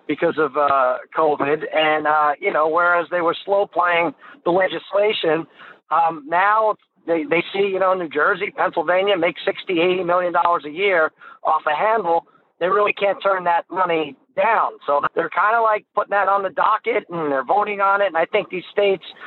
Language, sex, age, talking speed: English, male, 50-69, 195 wpm